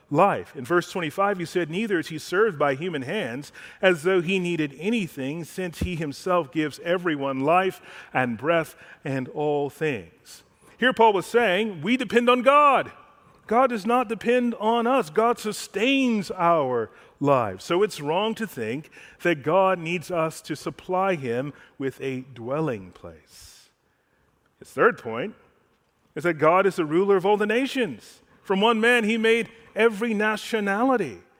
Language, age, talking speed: English, 40-59, 160 wpm